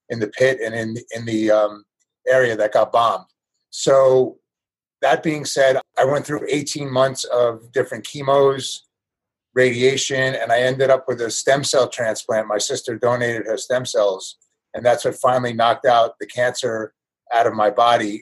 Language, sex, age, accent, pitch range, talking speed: English, male, 30-49, American, 115-130 Hz, 170 wpm